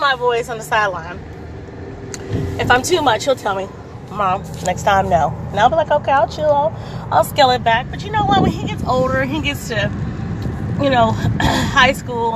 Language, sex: English, female